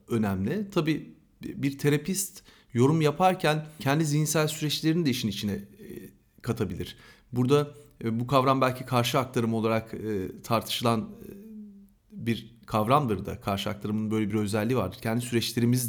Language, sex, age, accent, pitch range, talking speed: Turkish, male, 40-59, native, 110-170 Hz, 120 wpm